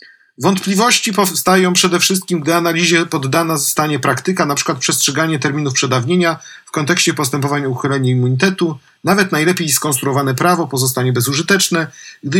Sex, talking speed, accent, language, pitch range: male, 125 wpm, native, Polish, 140-175 Hz